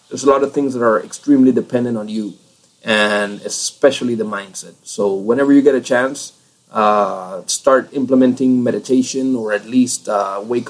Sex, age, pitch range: male, 30-49, 110-135 Hz